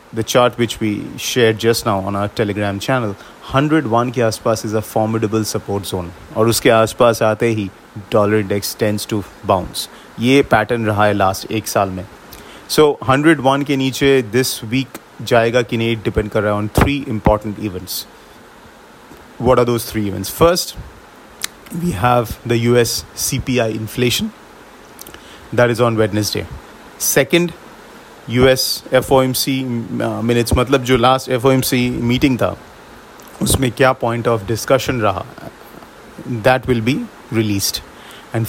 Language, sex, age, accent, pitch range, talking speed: English, male, 30-49, Indian, 110-130 Hz, 125 wpm